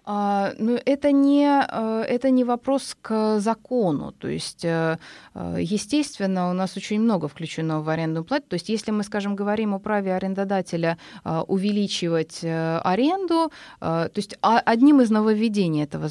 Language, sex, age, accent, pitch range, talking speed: Russian, female, 30-49, native, 160-225 Hz, 125 wpm